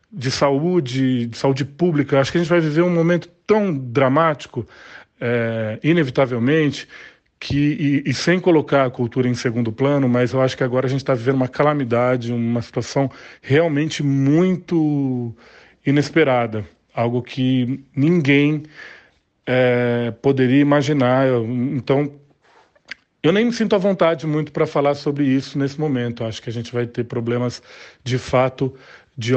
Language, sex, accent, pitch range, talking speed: Portuguese, male, Brazilian, 125-155 Hz, 150 wpm